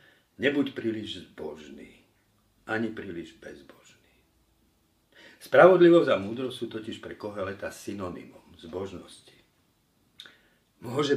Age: 50-69